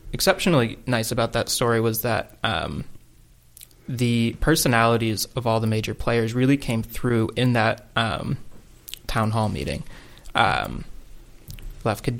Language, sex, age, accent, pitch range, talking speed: English, male, 20-39, American, 110-125 Hz, 130 wpm